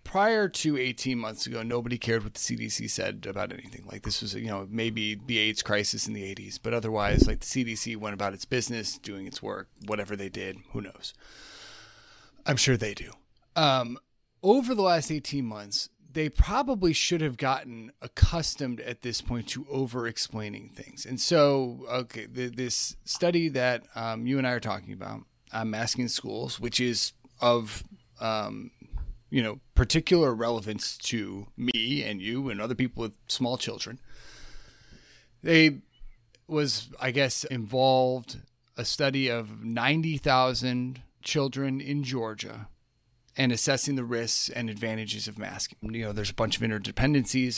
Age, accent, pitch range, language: 30-49, American, 110-130 Hz, English